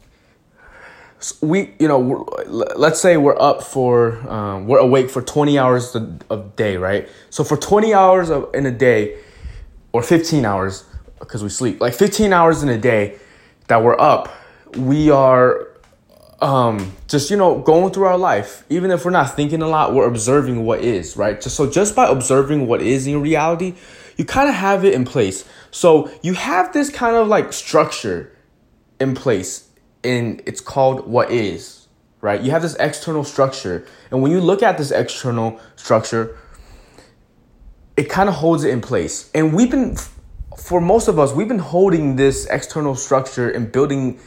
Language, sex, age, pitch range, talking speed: English, male, 20-39, 115-160 Hz, 170 wpm